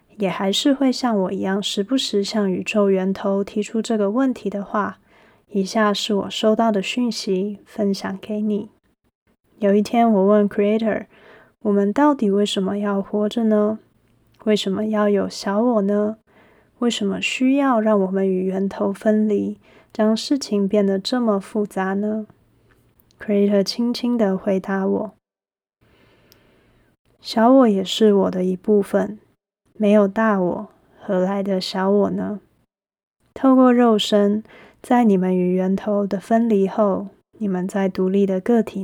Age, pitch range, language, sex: 20-39, 195-220 Hz, Chinese, female